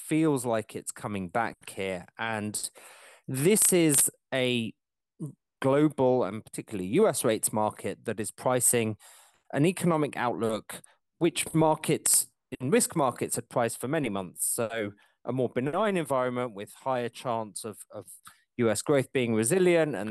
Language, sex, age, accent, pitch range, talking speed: English, male, 30-49, British, 100-135 Hz, 140 wpm